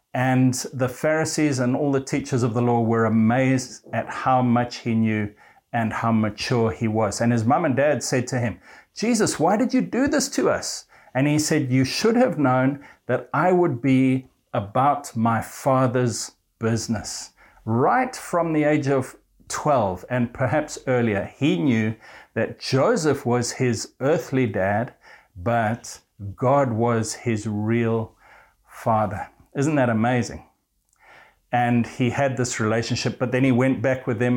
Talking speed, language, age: 160 wpm, English, 60-79